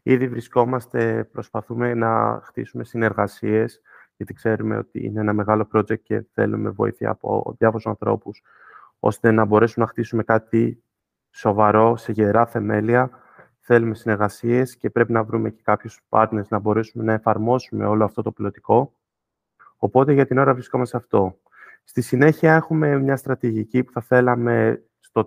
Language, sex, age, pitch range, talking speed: Greek, male, 20-39, 110-120 Hz, 145 wpm